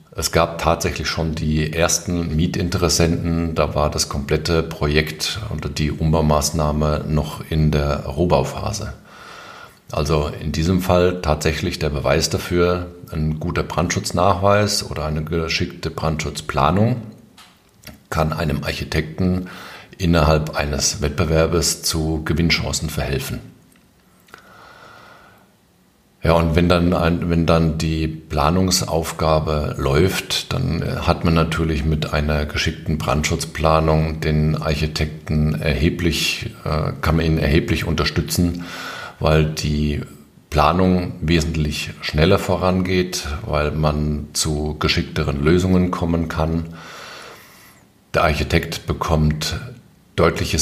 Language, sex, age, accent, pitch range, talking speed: German, male, 50-69, German, 75-90 Hz, 100 wpm